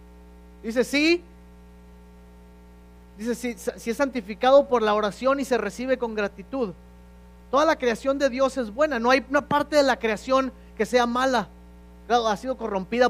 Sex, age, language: male, 40-59, Spanish